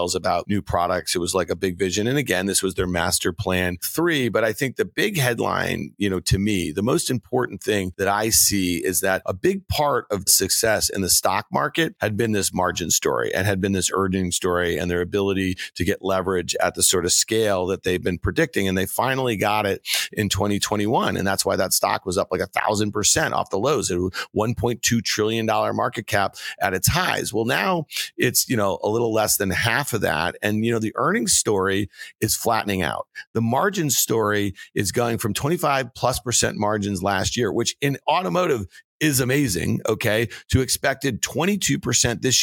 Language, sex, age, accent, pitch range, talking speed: English, male, 40-59, American, 100-130 Hz, 205 wpm